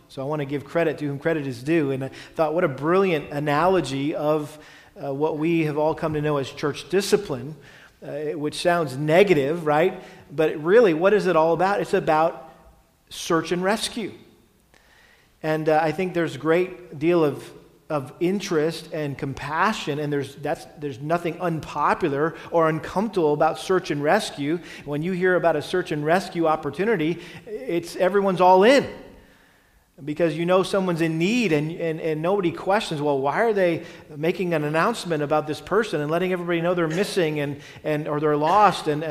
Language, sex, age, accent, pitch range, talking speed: English, male, 40-59, American, 150-180 Hz, 180 wpm